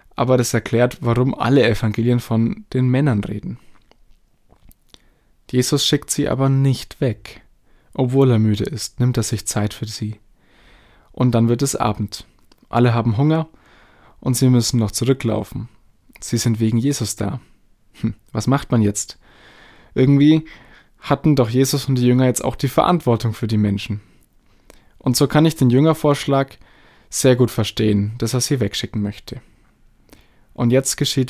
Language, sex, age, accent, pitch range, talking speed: German, male, 20-39, German, 110-130 Hz, 155 wpm